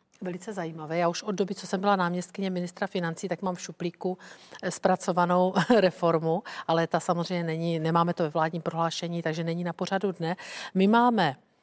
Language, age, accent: Czech, 50-69, native